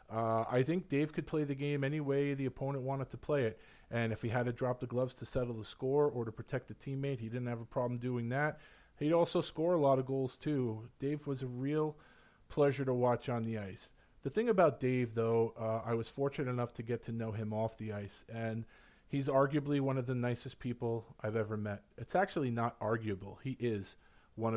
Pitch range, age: 110-130 Hz, 40-59